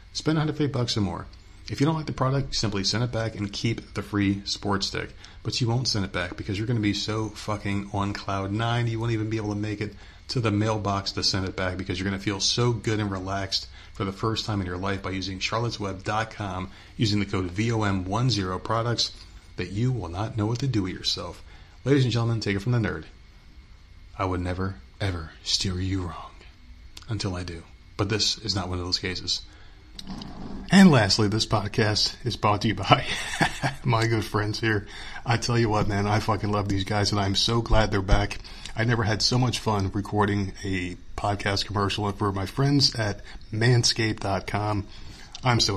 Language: English